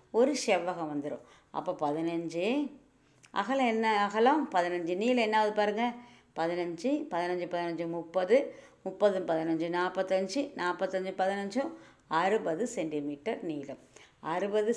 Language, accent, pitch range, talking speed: Tamil, native, 165-230 Hz, 100 wpm